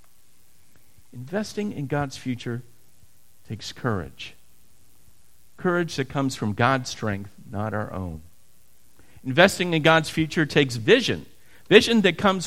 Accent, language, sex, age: American, English, male, 50-69